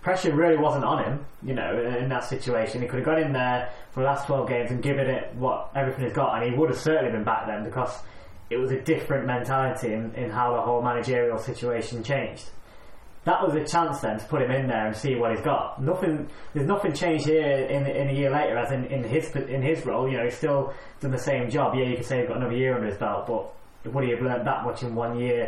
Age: 20-39